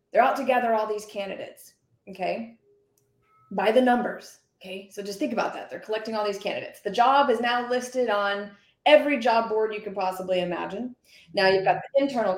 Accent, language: American, English